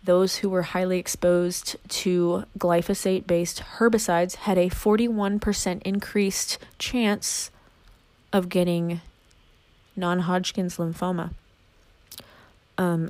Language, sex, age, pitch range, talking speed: English, female, 20-39, 175-205 Hz, 85 wpm